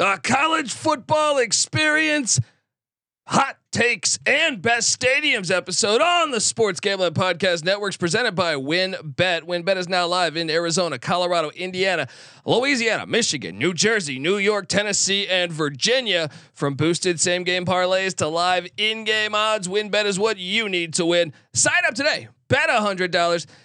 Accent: American